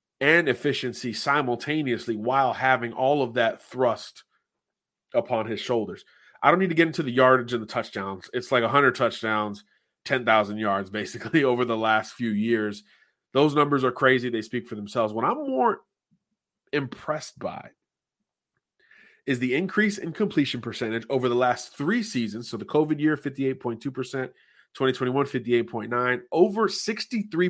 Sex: male